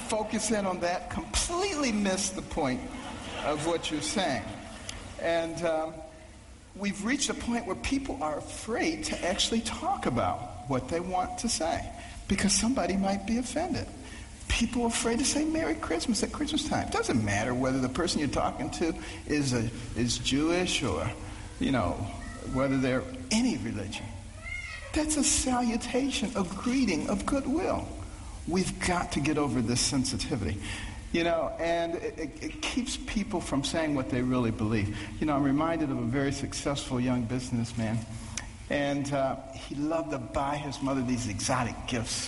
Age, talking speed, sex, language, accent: 60-79, 165 wpm, male, English, American